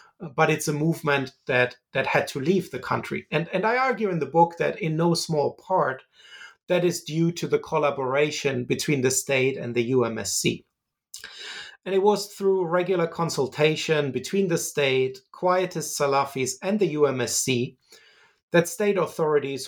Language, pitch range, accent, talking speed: English, 135-175 Hz, German, 160 wpm